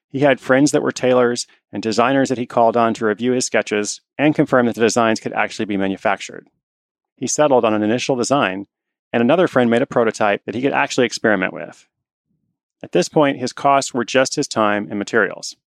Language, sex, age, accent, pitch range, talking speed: English, male, 30-49, American, 115-145 Hz, 205 wpm